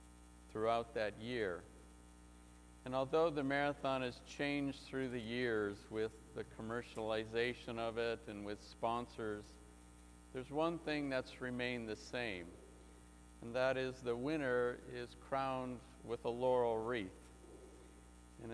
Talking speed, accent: 125 wpm, American